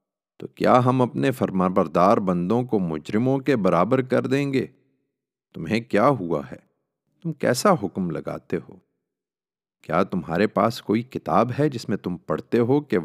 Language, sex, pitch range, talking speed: Urdu, male, 95-140 Hz, 155 wpm